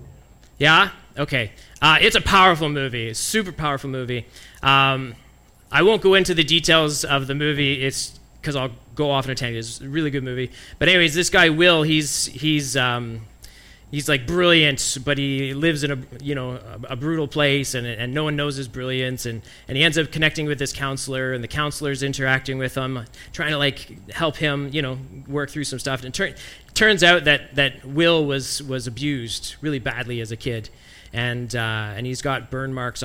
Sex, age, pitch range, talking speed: male, 20-39, 120-155 Hz, 205 wpm